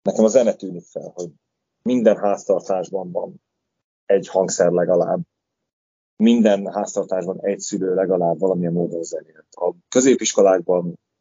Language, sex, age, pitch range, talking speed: Hungarian, male, 30-49, 85-110 Hz, 120 wpm